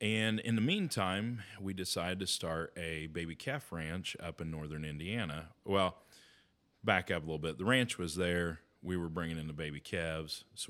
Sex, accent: male, American